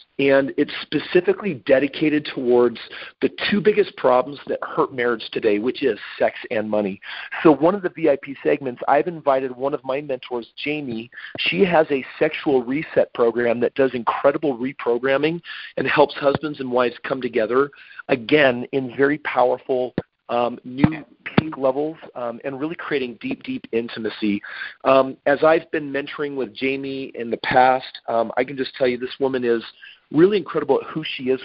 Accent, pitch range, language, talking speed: American, 125-160 Hz, English, 170 wpm